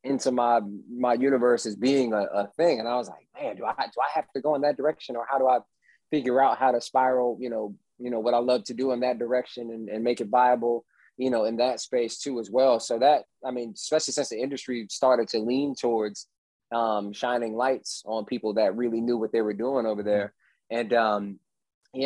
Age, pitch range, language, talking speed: 20-39, 110-125 Hz, English, 235 wpm